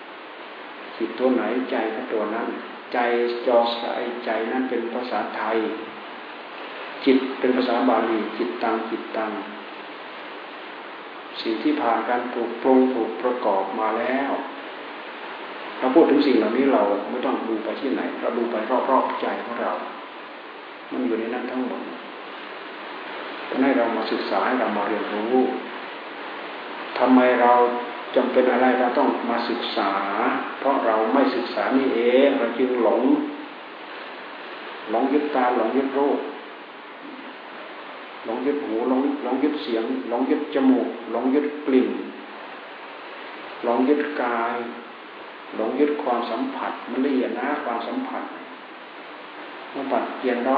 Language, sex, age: Thai, male, 60-79